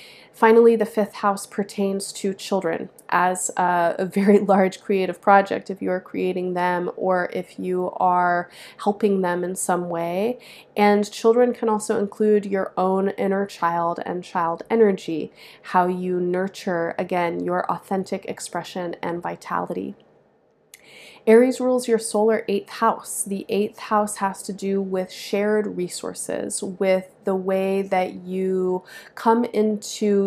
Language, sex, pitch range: English, female, 180-210 Hz